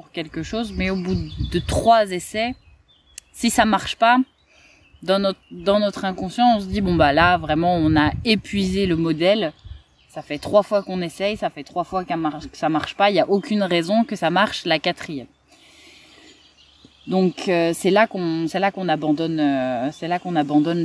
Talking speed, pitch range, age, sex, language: 200 wpm, 155-195 Hz, 20-39, female, French